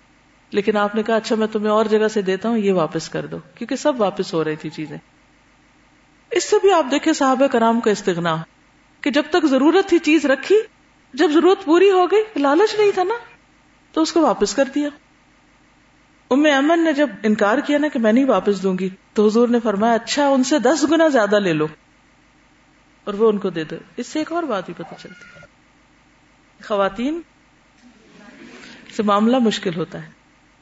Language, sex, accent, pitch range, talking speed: English, female, Indian, 195-290 Hz, 145 wpm